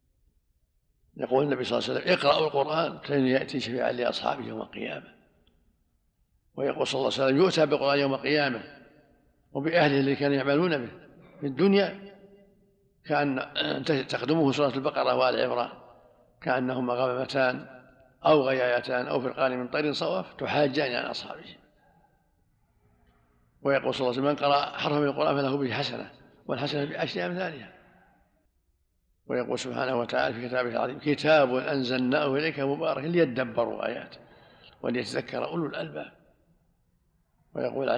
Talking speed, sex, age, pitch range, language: 130 wpm, male, 50-69, 125-145 Hz, Arabic